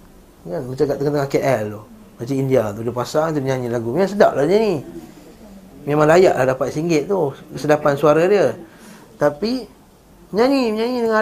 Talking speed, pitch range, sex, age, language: 170 wpm, 140-200 Hz, male, 30-49, Malay